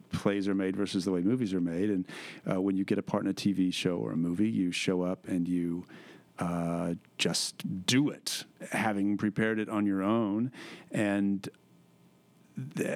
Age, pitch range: 40-59, 95-110 Hz